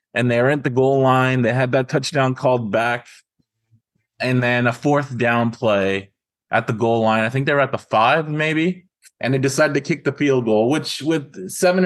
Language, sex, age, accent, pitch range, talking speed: English, male, 20-39, American, 105-130 Hz, 200 wpm